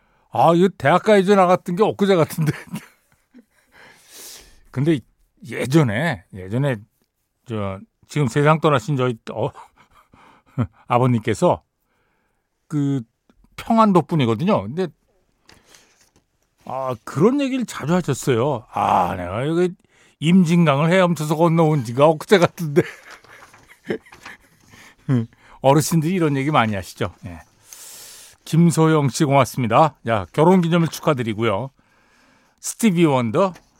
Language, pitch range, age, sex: Korean, 115-175 Hz, 60-79, male